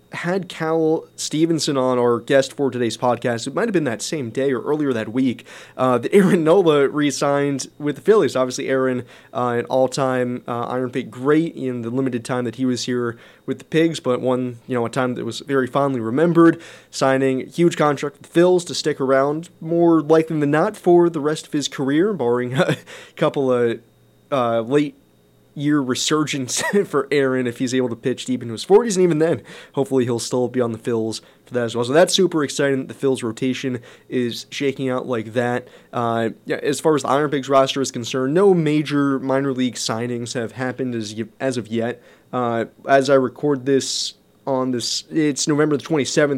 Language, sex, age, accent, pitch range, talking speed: English, male, 20-39, American, 120-150 Hz, 205 wpm